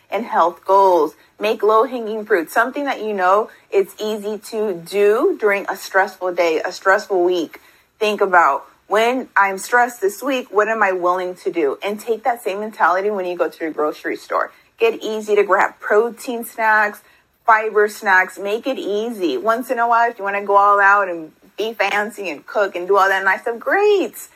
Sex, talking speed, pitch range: female, 195 wpm, 205-260 Hz